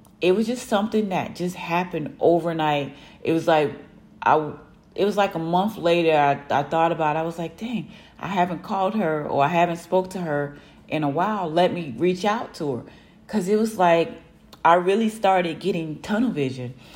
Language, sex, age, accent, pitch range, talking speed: English, female, 30-49, American, 150-185 Hz, 200 wpm